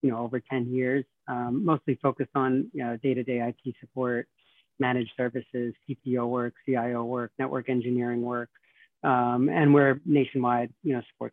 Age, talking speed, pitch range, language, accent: 30-49, 165 wpm, 120-135 Hz, English, American